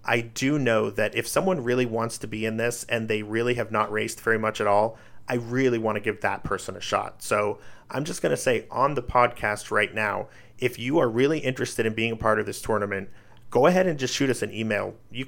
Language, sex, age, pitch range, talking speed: English, male, 40-59, 110-125 Hz, 250 wpm